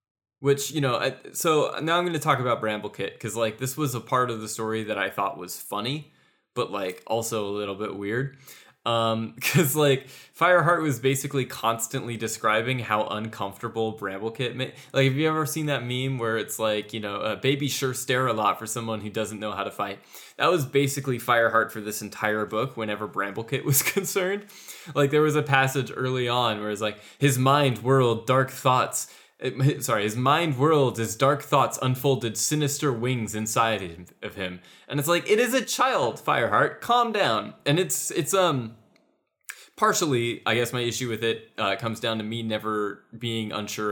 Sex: male